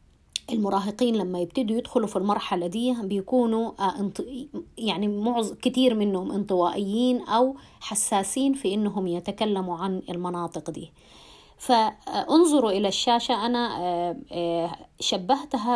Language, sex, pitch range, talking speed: English, female, 180-240 Hz, 95 wpm